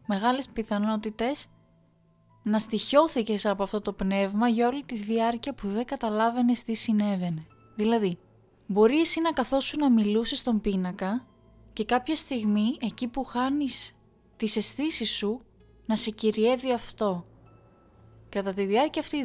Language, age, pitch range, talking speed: Greek, 20-39, 205-255 Hz, 135 wpm